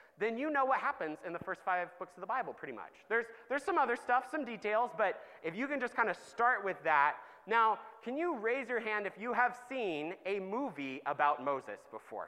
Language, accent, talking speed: English, American, 230 wpm